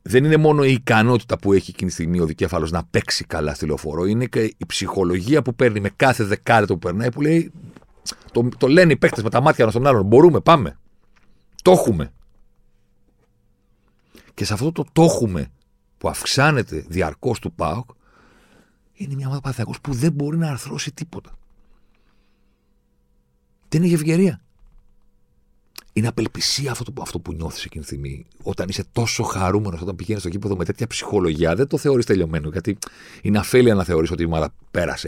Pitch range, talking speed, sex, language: 85-120 Hz, 170 wpm, male, Greek